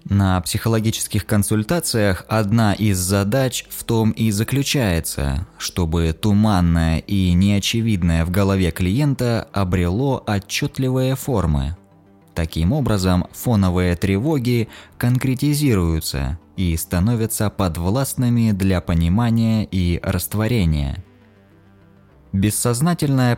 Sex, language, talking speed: male, Russian, 85 wpm